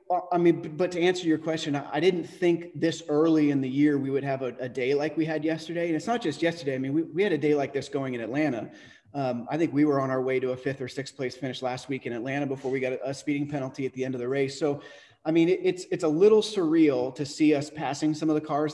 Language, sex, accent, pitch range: English, male, American, 130-155 Hz